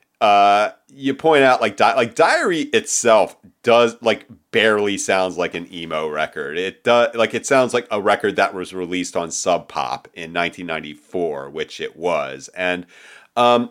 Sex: male